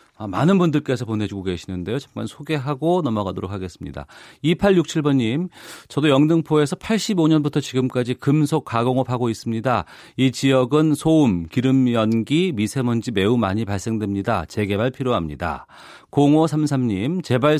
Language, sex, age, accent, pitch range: Korean, male, 40-59, native, 110-155 Hz